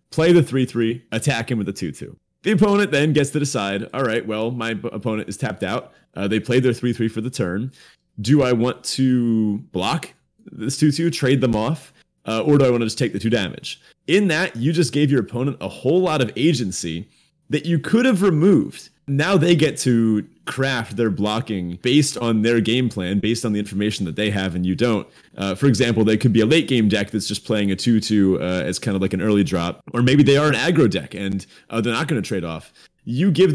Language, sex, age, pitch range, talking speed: English, male, 30-49, 105-145 Hz, 230 wpm